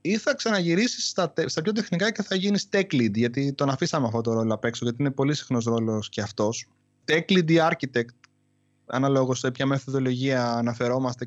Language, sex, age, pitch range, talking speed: Greek, male, 20-39, 125-155 Hz, 190 wpm